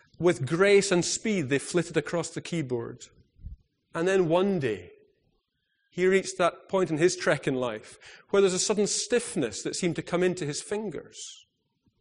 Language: English